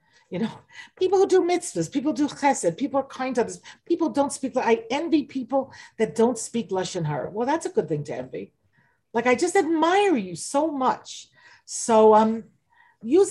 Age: 40-59